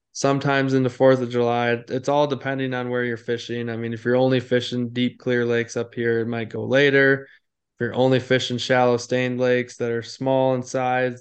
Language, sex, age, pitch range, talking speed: English, male, 20-39, 120-140 Hz, 215 wpm